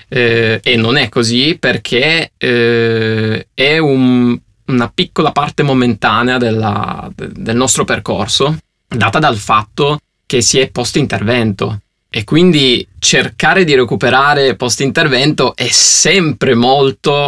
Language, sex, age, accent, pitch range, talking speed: Italian, male, 20-39, native, 115-140 Hz, 120 wpm